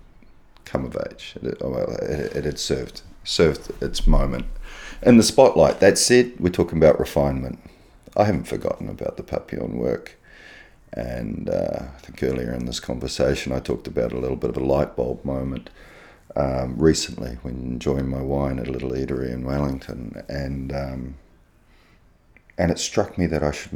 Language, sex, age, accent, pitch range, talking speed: English, male, 30-49, Australian, 65-75 Hz, 170 wpm